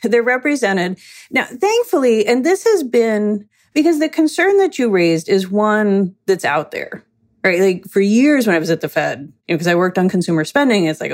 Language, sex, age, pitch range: English, female, 30-49, 180-240 Hz